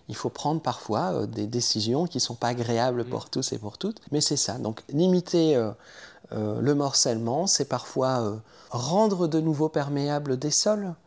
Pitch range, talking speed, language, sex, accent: 115-150 Hz, 190 wpm, French, male, French